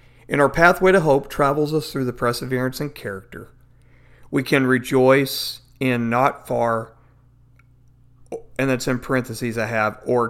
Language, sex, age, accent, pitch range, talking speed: English, male, 50-69, American, 120-140 Hz, 145 wpm